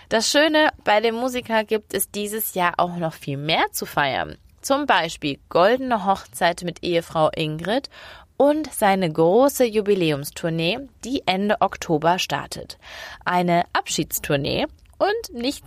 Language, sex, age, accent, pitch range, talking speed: German, female, 20-39, German, 175-235 Hz, 130 wpm